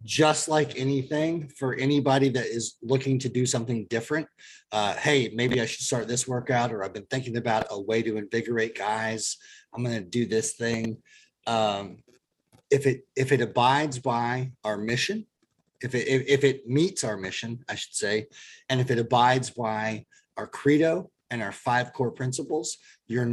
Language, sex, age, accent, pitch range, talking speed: English, male, 30-49, American, 115-140 Hz, 175 wpm